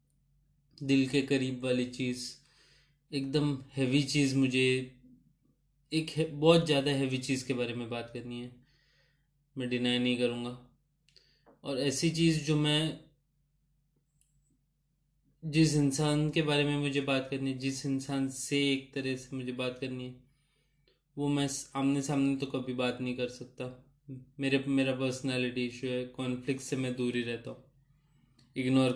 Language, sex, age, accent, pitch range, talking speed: Hindi, male, 20-39, native, 130-140 Hz, 145 wpm